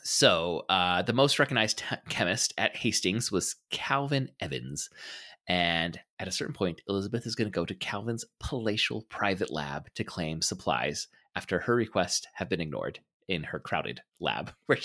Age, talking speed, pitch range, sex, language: 30-49, 160 wpm, 90-125 Hz, male, English